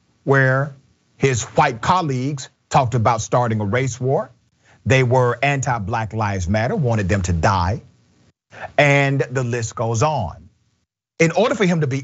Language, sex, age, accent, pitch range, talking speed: English, male, 40-59, American, 110-145 Hz, 155 wpm